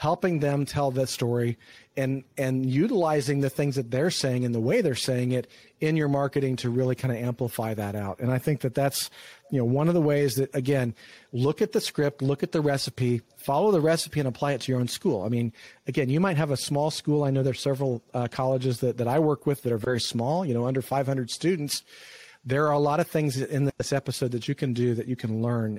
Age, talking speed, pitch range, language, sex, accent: 40-59, 250 wpm, 120-140 Hz, English, male, American